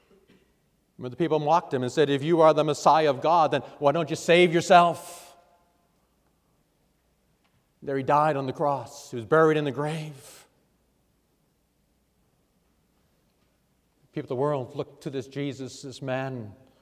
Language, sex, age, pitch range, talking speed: English, male, 40-59, 140-210 Hz, 150 wpm